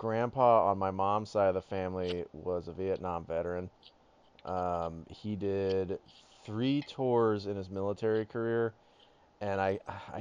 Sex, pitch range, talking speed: male, 90-105 Hz, 135 wpm